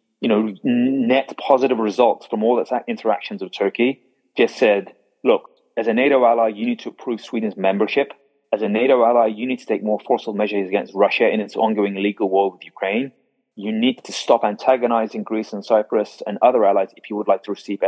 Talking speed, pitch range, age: 205 wpm, 105-145 Hz, 30-49